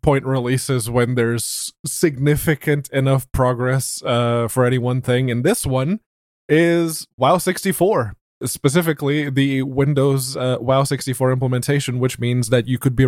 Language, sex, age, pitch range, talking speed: English, male, 20-39, 125-145 Hz, 140 wpm